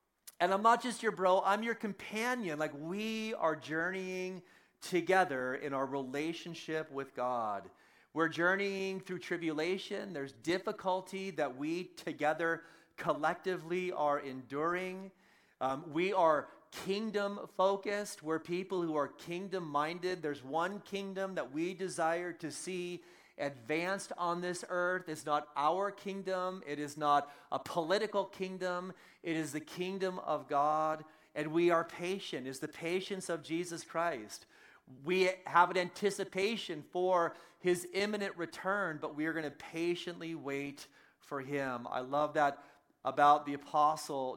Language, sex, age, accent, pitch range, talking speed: English, male, 40-59, American, 150-185 Hz, 140 wpm